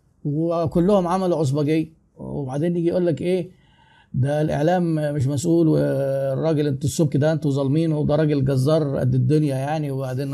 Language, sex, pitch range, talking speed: Arabic, male, 135-170 Hz, 145 wpm